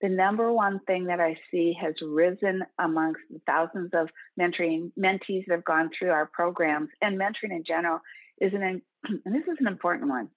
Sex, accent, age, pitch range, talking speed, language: female, American, 50-69, 165-195 Hz, 190 wpm, English